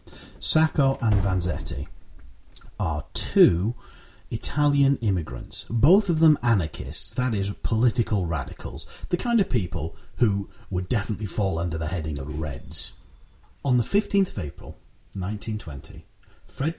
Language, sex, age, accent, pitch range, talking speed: English, male, 40-59, British, 80-115 Hz, 125 wpm